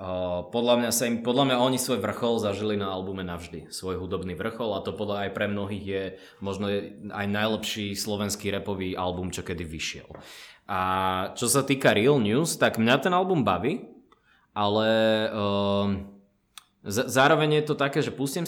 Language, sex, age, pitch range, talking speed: Czech, male, 20-39, 100-130 Hz, 170 wpm